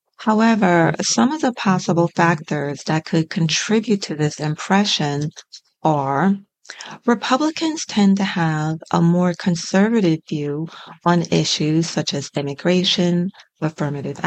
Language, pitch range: English, 160-200 Hz